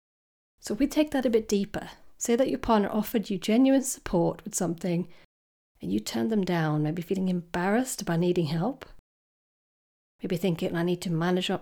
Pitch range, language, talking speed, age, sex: 170-220 Hz, English, 180 wpm, 40-59, female